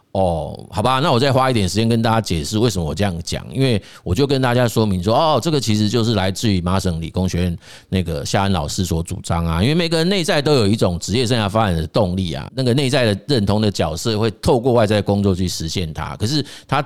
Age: 30-49